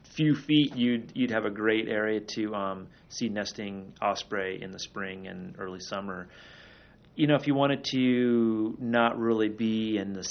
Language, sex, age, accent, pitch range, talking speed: English, male, 30-49, American, 95-115 Hz, 175 wpm